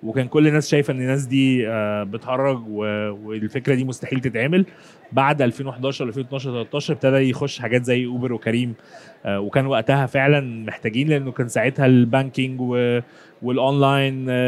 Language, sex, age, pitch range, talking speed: Arabic, male, 20-39, 115-140 Hz, 130 wpm